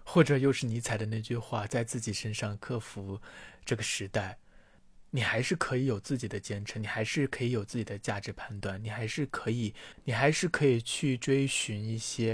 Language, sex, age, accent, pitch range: Chinese, male, 20-39, native, 105-125 Hz